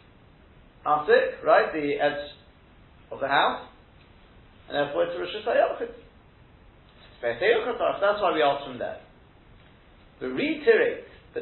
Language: English